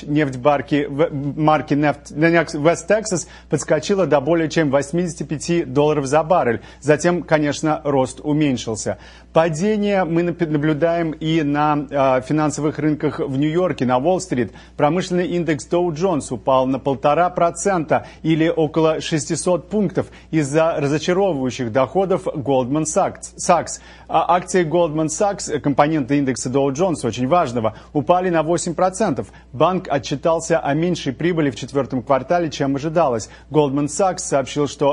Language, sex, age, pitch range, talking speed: Russian, male, 30-49, 135-170 Hz, 120 wpm